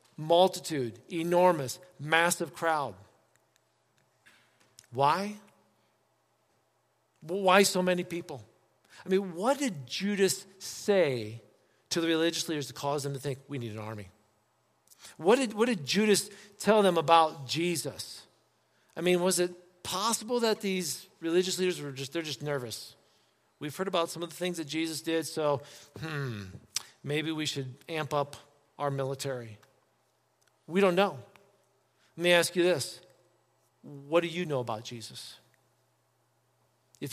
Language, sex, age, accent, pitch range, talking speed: English, male, 50-69, American, 130-180 Hz, 135 wpm